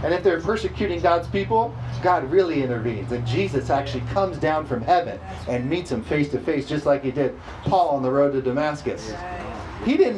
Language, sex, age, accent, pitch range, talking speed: English, male, 40-59, American, 125-180 Hz, 200 wpm